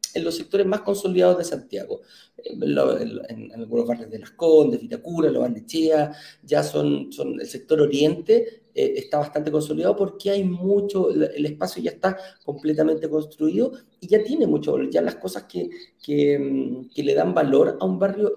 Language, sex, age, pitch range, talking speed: Spanish, male, 40-59, 120-200 Hz, 180 wpm